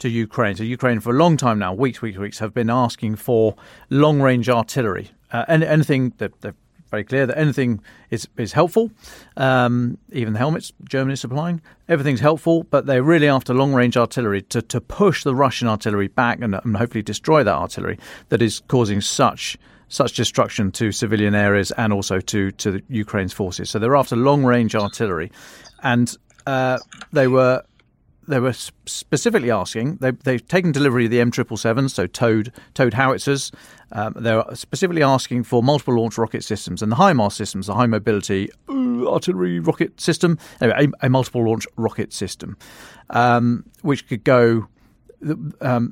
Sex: male